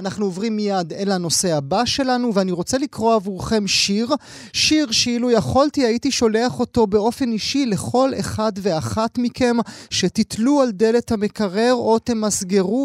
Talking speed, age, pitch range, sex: 140 wpm, 30-49, 165-225 Hz, male